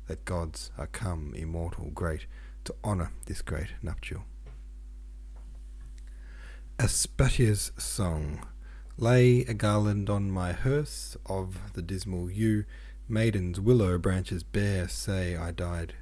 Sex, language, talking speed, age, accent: male, English, 110 wpm, 30-49, Australian